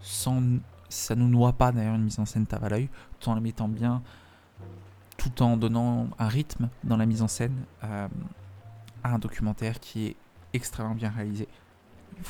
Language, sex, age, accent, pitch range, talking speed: French, male, 20-39, French, 105-120 Hz, 185 wpm